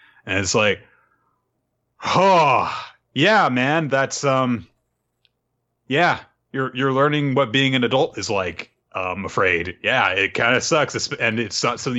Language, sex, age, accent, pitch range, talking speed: English, male, 30-49, American, 115-150 Hz, 145 wpm